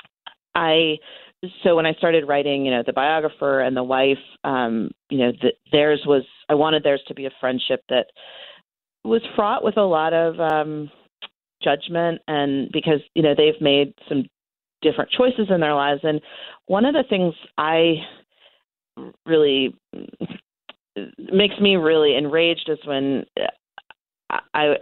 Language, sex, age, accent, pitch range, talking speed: English, female, 40-59, American, 135-165 Hz, 145 wpm